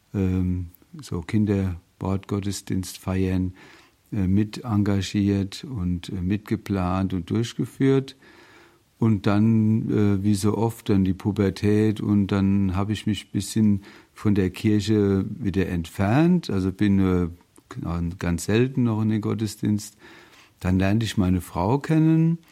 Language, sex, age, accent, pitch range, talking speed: German, male, 50-69, German, 95-110 Hz, 115 wpm